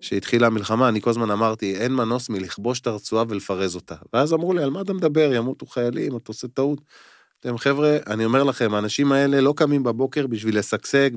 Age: 20-39